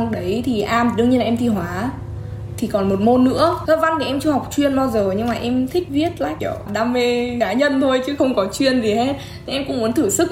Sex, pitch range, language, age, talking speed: female, 210-260 Hz, Vietnamese, 10-29, 260 wpm